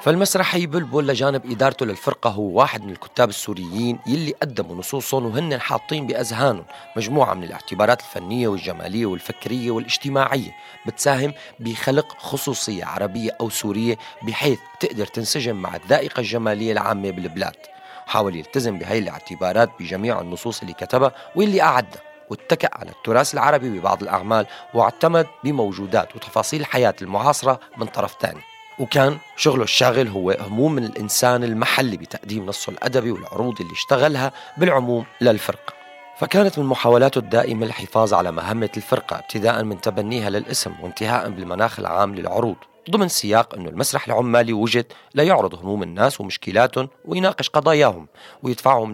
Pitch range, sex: 105-140 Hz, male